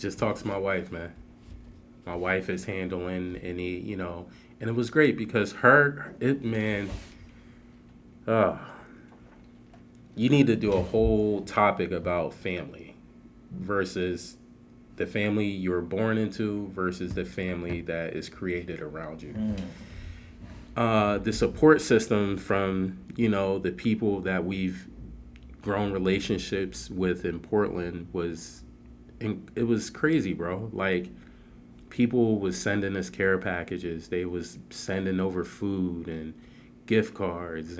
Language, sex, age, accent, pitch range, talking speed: English, male, 30-49, American, 85-105 Hz, 130 wpm